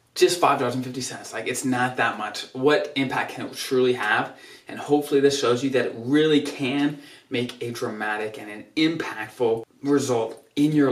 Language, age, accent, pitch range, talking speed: English, 20-39, American, 120-145 Hz, 170 wpm